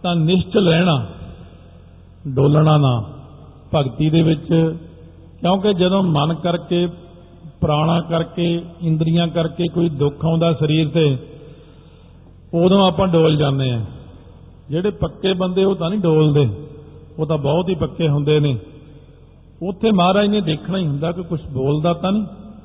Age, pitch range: 50-69, 145-170 Hz